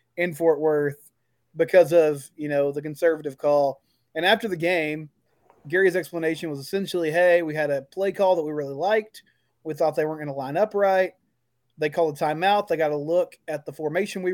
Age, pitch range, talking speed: 20-39, 150-190 Hz, 205 wpm